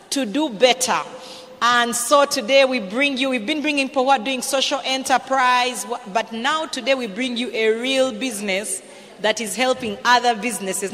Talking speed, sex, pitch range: 165 wpm, female, 225-275 Hz